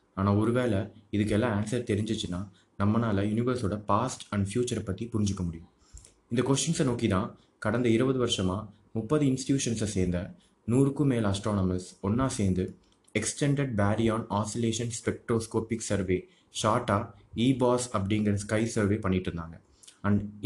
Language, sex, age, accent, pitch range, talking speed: Tamil, male, 20-39, native, 100-120 Hz, 125 wpm